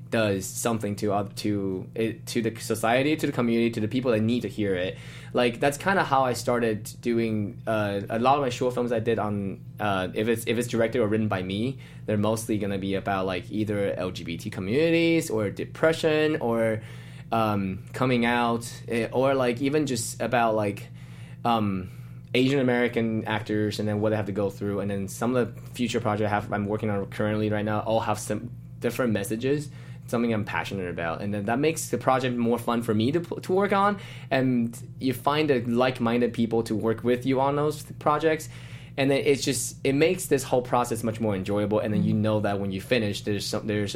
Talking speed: 215 wpm